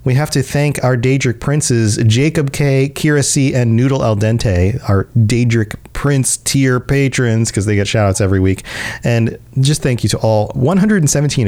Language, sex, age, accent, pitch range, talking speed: English, male, 40-59, American, 110-150 Hz, 180 wpm